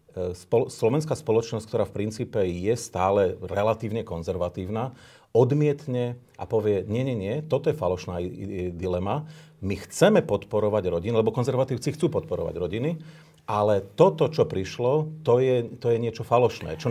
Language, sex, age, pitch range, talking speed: Slovak, male, 40-59, 100-135 Hz, 145 wpm